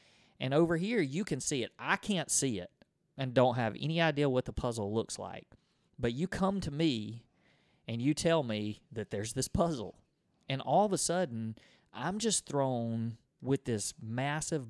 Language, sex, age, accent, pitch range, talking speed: English, male, 30-49, American, 115-150 Hz, 185 wpm